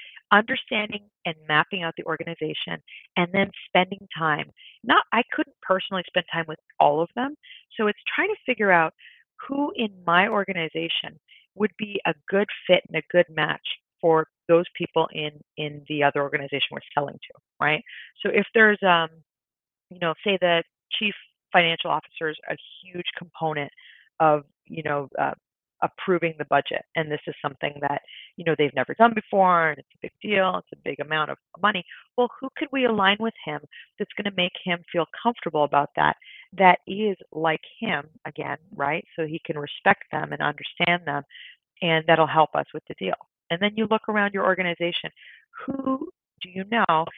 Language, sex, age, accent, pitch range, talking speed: English, female, 40-59, American, 160-210 Hz, 180 wpm